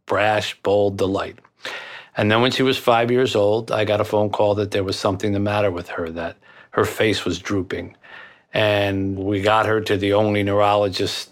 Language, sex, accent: English, male, American